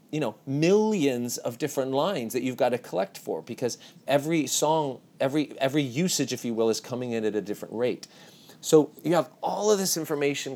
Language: English